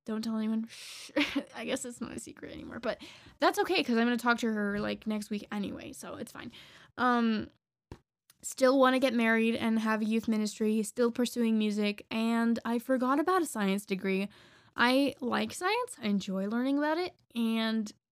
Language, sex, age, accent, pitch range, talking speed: English, female, 10-29, American, 215-260 Hz, 190 wpm